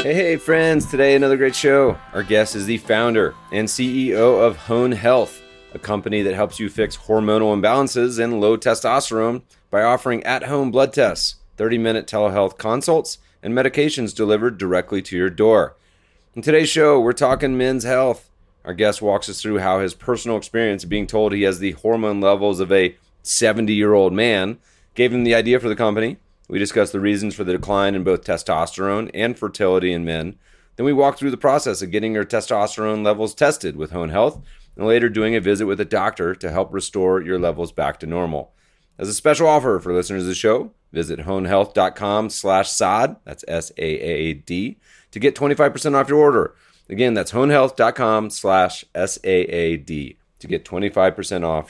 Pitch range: 95-120 Hz